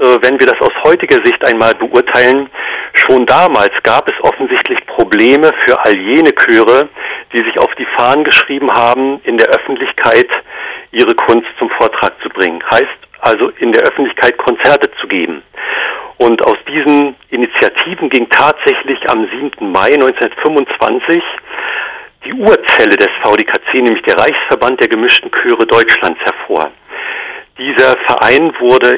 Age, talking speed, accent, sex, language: 50-69, 140 wpm, German, male, German